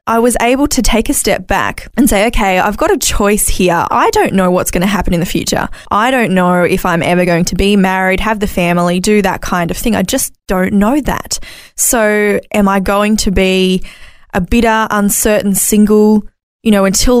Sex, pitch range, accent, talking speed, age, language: female, 185-220 Hz, Australian, 215 wpm, 20-39, English